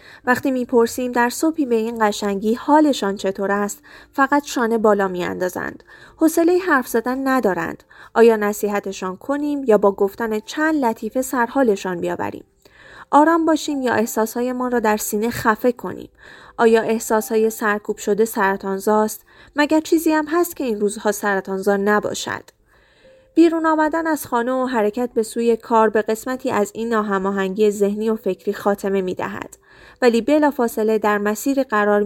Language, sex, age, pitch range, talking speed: Persian, female, 30-49, 205-255 Hz, 140 wpm